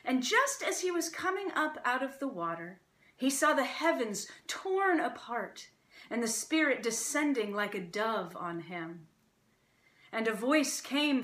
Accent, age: American, 30-49